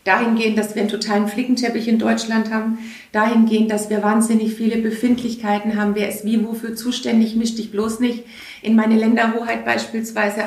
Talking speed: 165 wpm